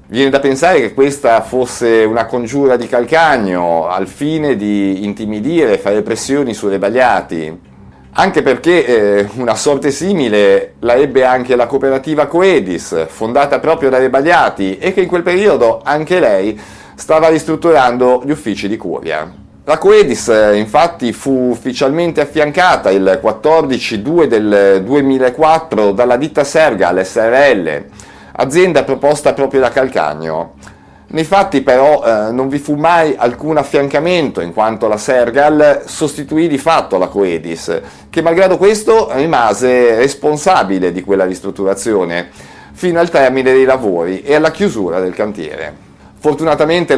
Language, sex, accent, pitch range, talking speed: Italian, male, native, 105-150 Hz, 135 wpm